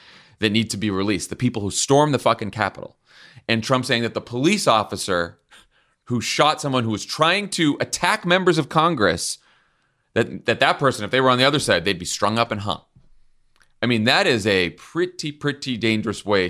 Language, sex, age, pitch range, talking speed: English, male, 30-49, 95-130 Hz, 205 wpm